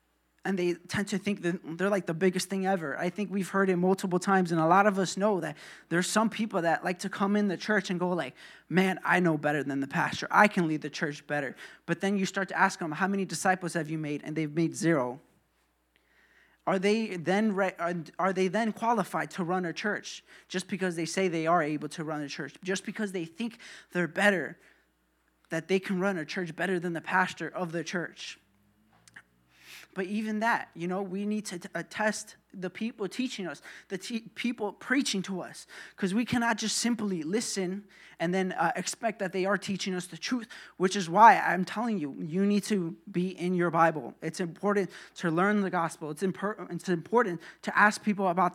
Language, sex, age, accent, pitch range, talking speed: English, male, 20-39, American, 170-200 Hz, 215 wpm